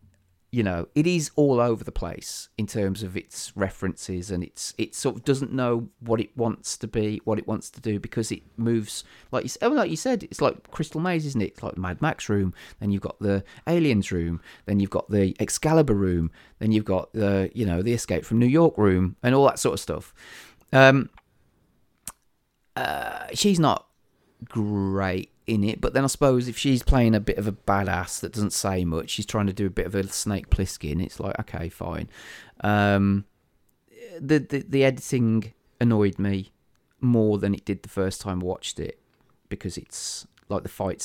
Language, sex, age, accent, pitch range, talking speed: English, male, 30-49, British, 95-125 Hz, 205 wpm